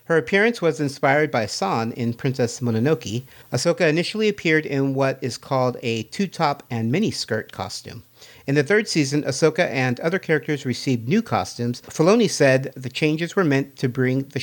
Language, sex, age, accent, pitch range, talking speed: English, male, 50-69, American, 125-155 Hz, 170 wpm